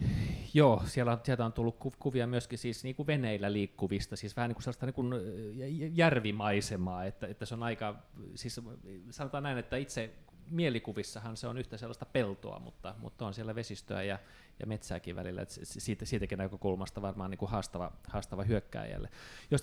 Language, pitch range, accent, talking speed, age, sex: Finnish, 100-120 Hz, native, 170 wpm, 30-49, male